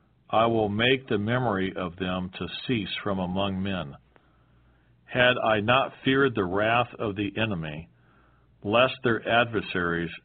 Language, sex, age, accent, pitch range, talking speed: English, male, 50-69, American, 75-120 Hz, 140 wpm